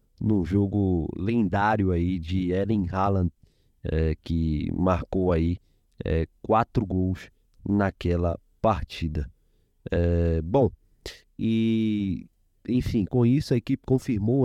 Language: Portuguese